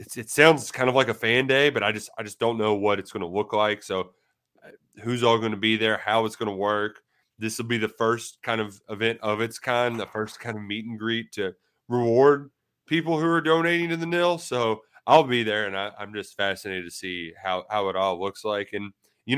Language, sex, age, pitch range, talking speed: English, male, 20-39, 100-125 Hz, 240 wpm